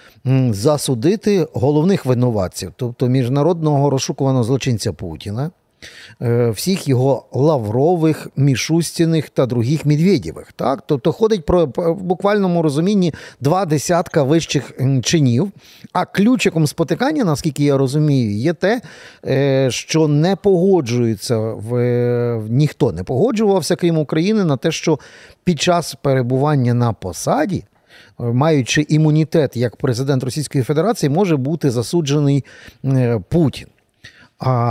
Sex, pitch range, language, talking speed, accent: male, 130-175 Hz, Ukrainian, 105 wpm, native